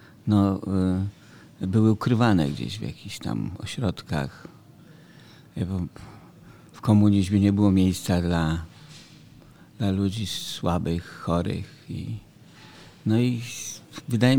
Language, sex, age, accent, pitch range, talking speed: Polish, male, 50-69, native, 95-115 Hz, 95 wpm